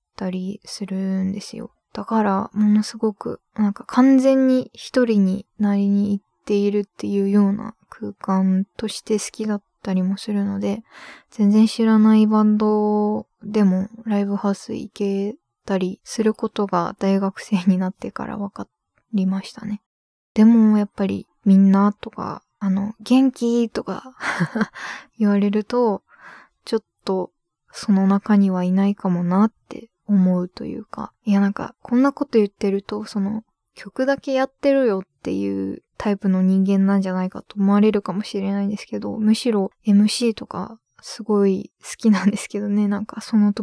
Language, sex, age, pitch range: Japanese, female, 20-39, 195-220 Hz